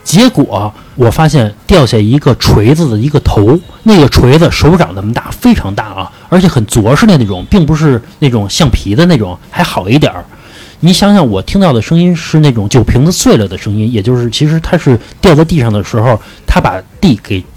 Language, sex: Chinese, male